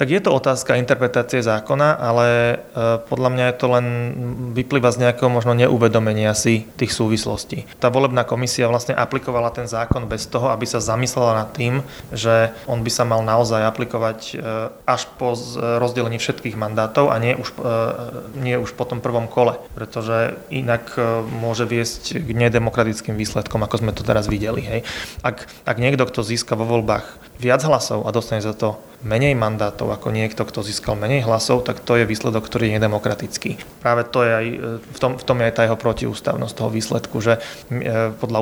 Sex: male